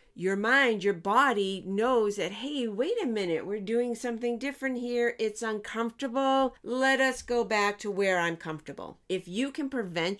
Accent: American